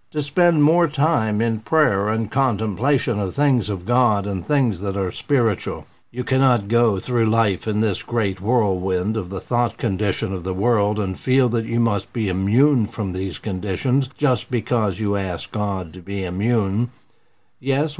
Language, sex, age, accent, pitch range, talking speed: English, male, 60-79, American, 105-135 Hz, 175 wpm